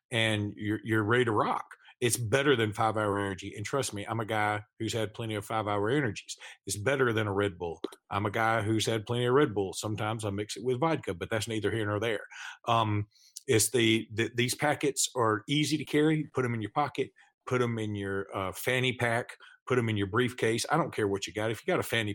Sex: male